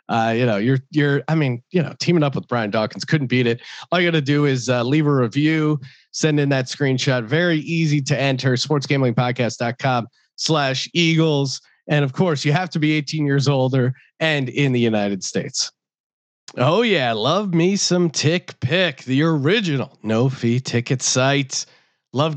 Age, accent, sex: 30-49, American, male